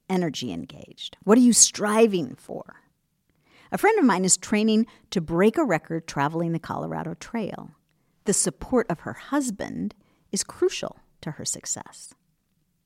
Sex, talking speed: female, 145 wpm